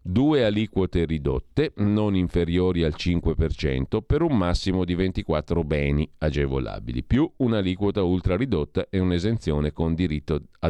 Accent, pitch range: native, 75-105 Hz